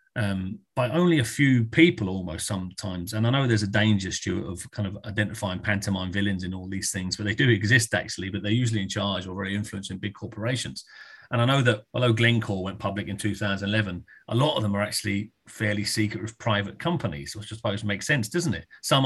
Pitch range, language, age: 100-115 Hz, English, 30-49